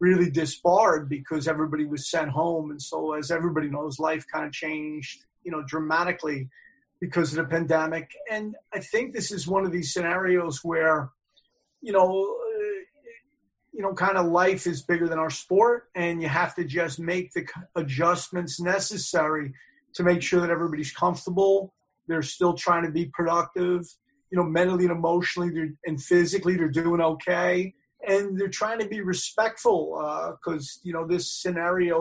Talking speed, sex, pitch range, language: 165 wpm, male, 155-180 Hz, English